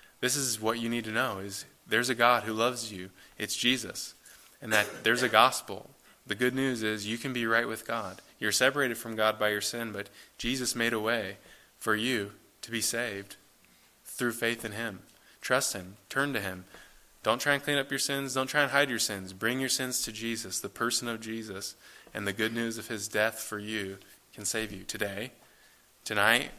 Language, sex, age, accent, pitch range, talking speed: English, male, 20-39, American, 105-120 Hz, 210 wpm